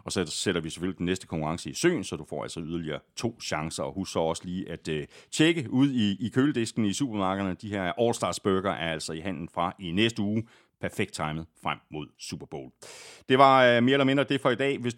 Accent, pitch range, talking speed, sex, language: native, 95-135 Hz, 230 wpm, male, Danish